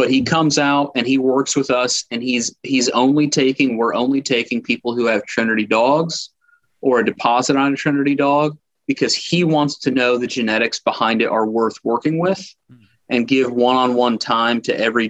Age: 30-49